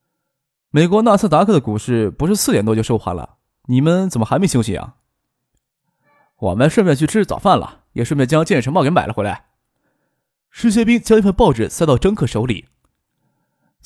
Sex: male